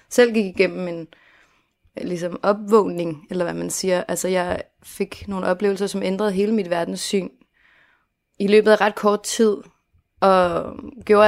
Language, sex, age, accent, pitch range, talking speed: Danish, female, 30-49, native, 180-210 Hz, 155 wpm